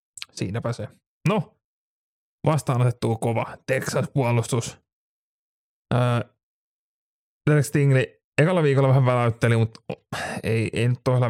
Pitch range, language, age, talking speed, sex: 115-135 Hz, Finnish, 30-49, 85 wpm, male